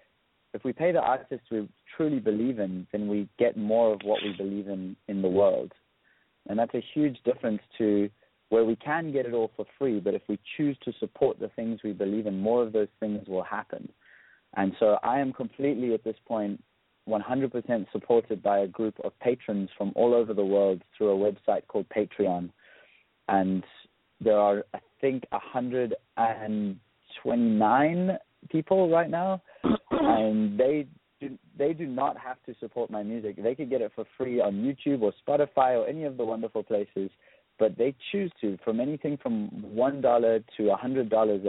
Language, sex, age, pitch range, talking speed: English, male, 30-49, 105-125 Hz, 175 wpm